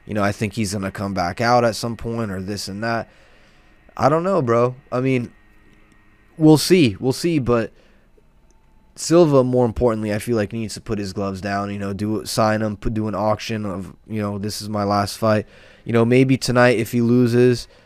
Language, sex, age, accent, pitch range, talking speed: English, male, 20-39, American, 105-125 Hz, 220 wpm